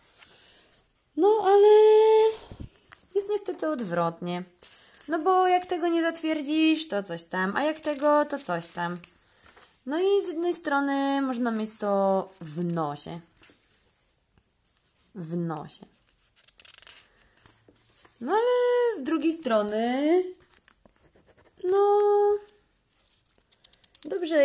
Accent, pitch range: native, 195-300 Hz